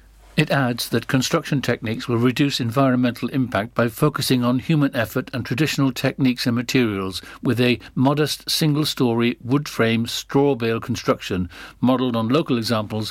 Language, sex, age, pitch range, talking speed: English, male, 60-79, 110-140 Hz, 145 wpm